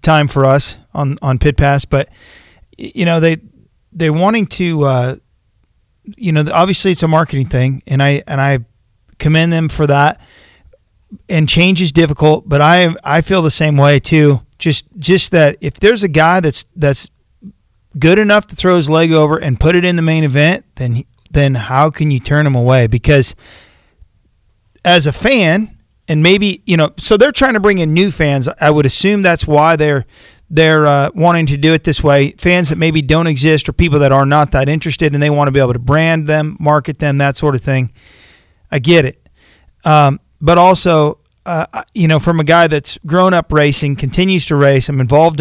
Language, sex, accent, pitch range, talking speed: English, male, American, 140-165 Hz, 200 wpm